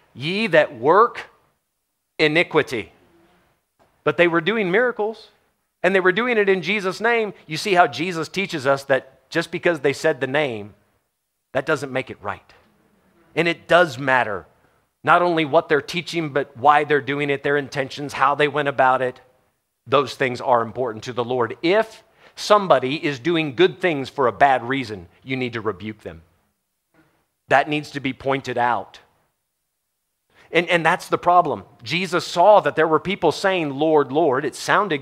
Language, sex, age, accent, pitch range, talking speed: English, male, 40-59, American, 130-170 Hz, 170 wpm